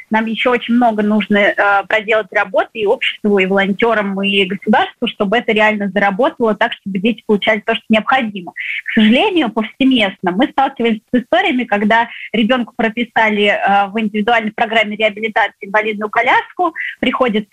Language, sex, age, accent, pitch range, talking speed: Russian, female, 20-39, native, 215-260 Hz, 145 wpm